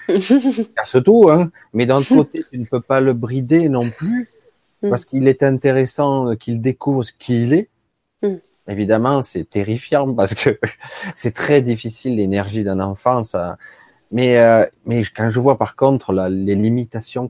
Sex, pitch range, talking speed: male, 110-140 Hz, 155 wpm